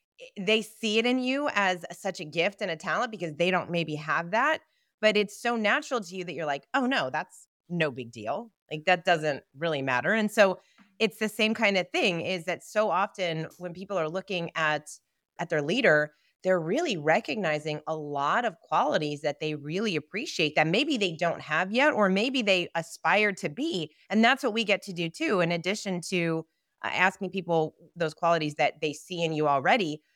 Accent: American